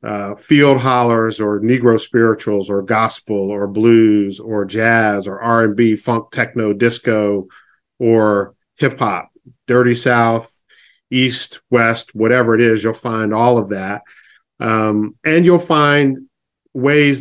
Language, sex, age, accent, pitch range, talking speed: English, male, 40-59, American, 105-120 Hz, 135 wpm